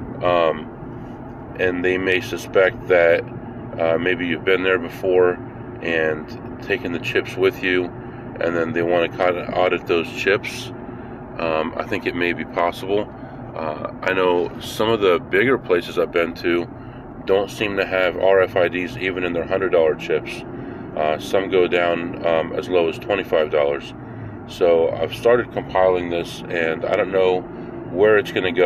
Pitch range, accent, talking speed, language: 85-120 Hz, American, 165 wpm, English